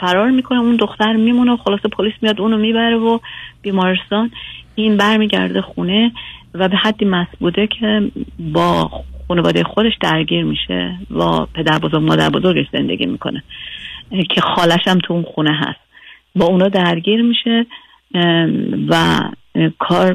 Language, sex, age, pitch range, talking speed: Persian, female, 30-49, 155-195 Hz, 140 wpm